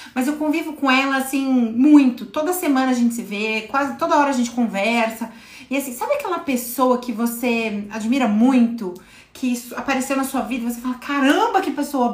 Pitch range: 230-275 Hz